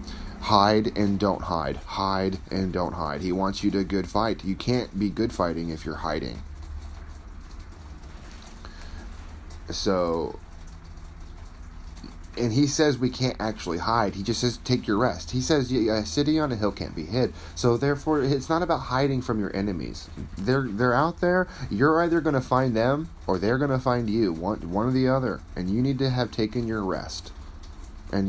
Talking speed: 180 wpm